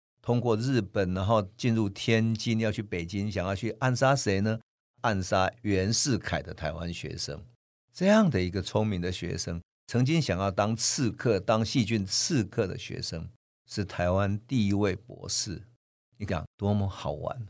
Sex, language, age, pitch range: male, Chinese, 50-69, 95-120 Hz